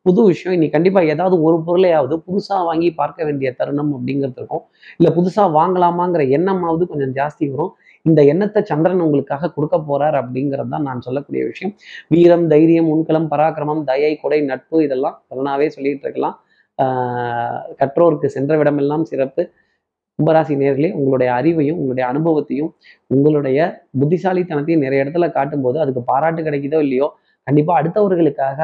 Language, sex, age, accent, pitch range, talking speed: Tamil, male, 20-39, native, 140-170 Hz, 135 wpm